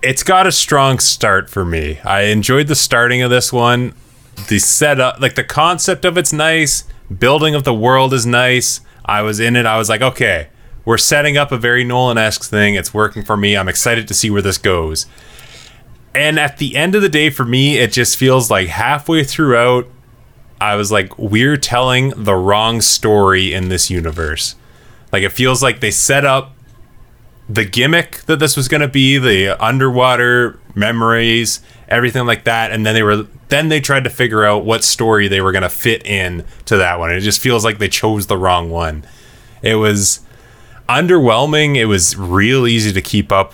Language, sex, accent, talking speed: English, male, American, 195 wpm